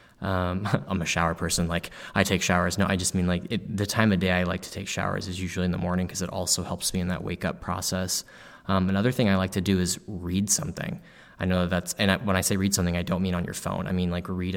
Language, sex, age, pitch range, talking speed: English, male, 20-39, 90-95 Hz, 285 wpm